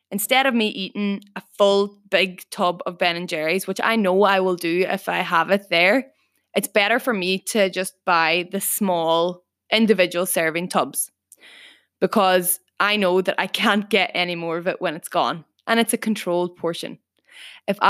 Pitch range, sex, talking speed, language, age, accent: 180-210 Hz, female, 185 wpm, English, 20-39, Irish